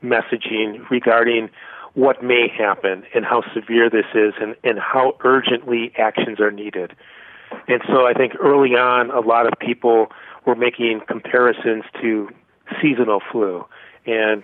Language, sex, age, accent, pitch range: Korean, male, 40-59, American, 105-120 Hz